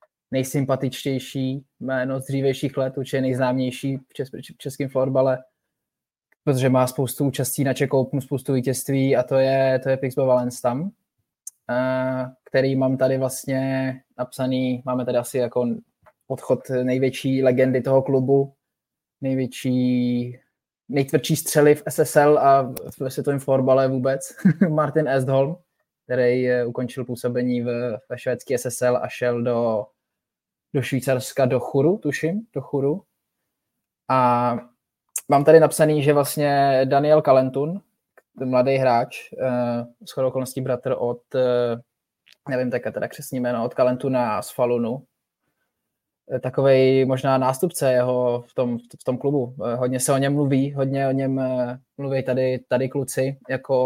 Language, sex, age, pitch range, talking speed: Czech, male, 20-39, 125-135 Hz, 125 wpm